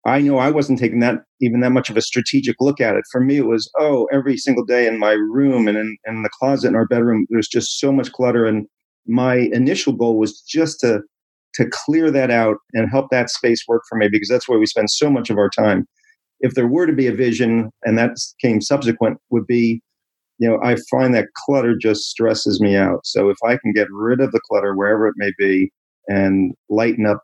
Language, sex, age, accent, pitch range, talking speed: English, male, 40-59, American, 105-130 Hz, 235 wpm